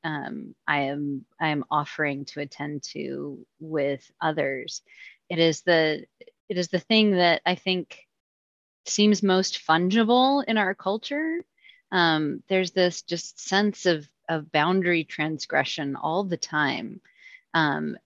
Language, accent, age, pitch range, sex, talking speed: English, American, 30-49, 165-220 Hz, female, 135 wpm